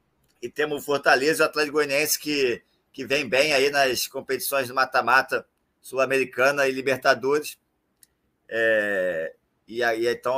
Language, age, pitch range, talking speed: Portuguese, 20-39, 140-155 Hz, 140 wpm